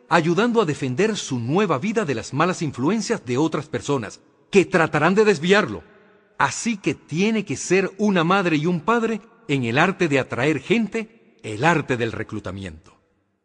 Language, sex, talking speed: Spanish, male, 165 wpm